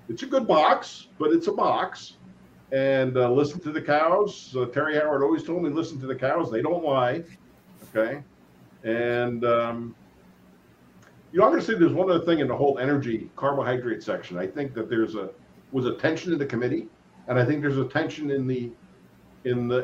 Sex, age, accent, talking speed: male, 50-69, American, 195 wpm